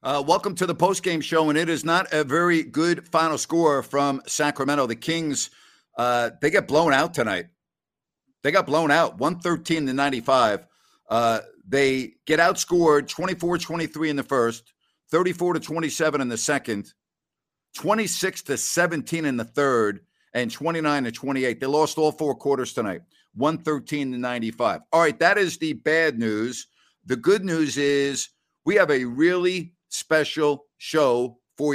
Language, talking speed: English, 155 wpm